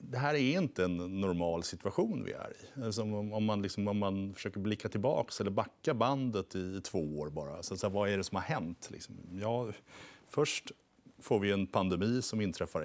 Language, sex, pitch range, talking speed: Swedish, male, 90-110 Hz, 200 wpm